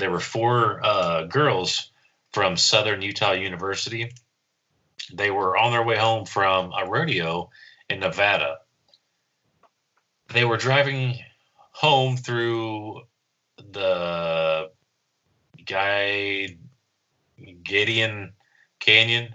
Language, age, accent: English, 30-49, American